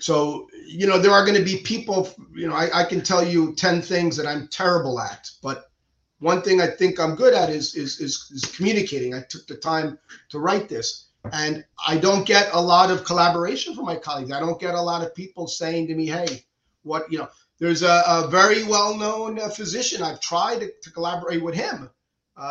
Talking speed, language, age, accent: 215 wpm, English, 40-59, American